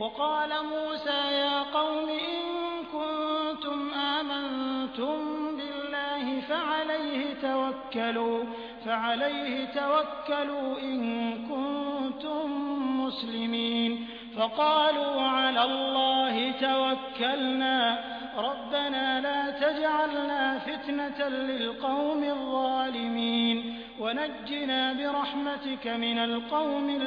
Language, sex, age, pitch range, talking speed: Hindi, male, 30-49, 255-295 Hz, 65 wpm